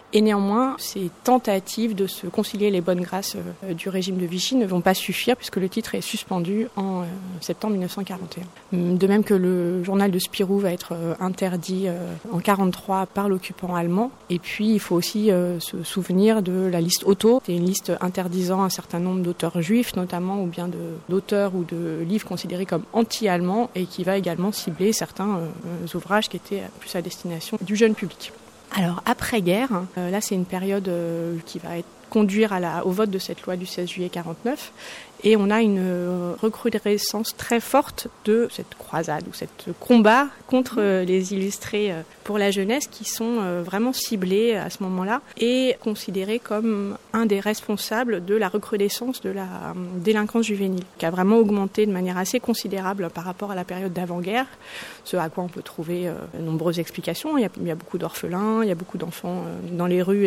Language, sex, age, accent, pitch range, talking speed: French, female, 20-39, French, 180-215 Hz, 185 wpm